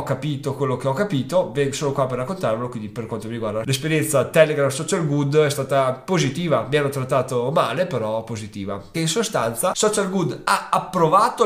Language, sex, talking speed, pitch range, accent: Italian, male, 175 wpm, 125-160 Hz, native